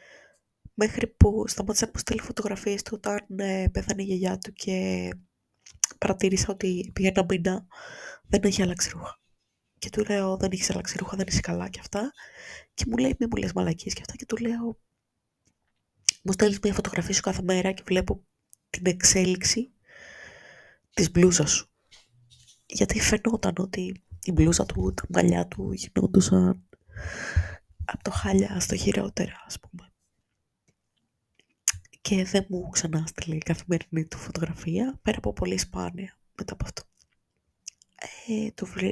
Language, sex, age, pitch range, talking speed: Greek, female, 20-39, 120-200 Hz, 140 wpm